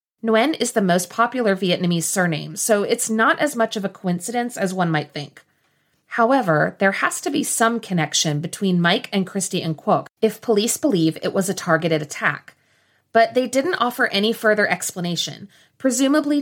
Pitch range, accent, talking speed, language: 175-230 Hz, American, 170 wpm, English